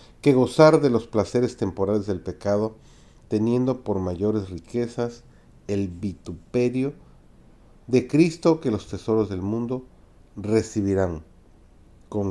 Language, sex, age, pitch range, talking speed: Spanish, male, 40-59, 95-125 Hz, 110 wpm